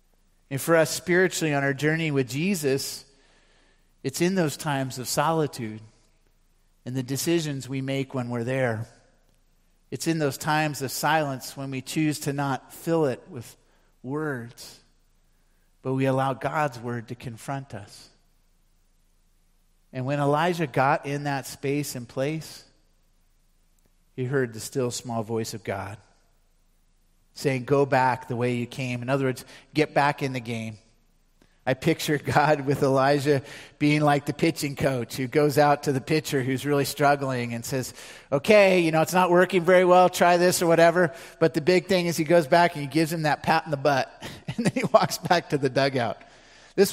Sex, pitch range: male, 130-160 Hz